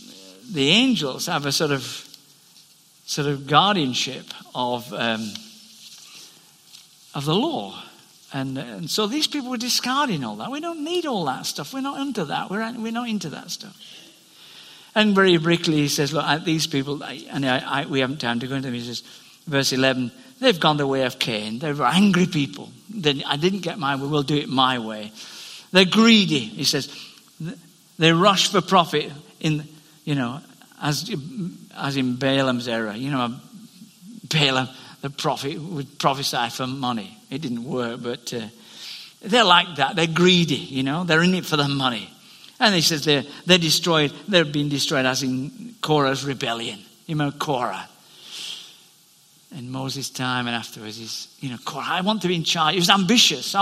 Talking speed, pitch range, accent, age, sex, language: 180 wpm, 135-185 Hz, British, 50-69, male, English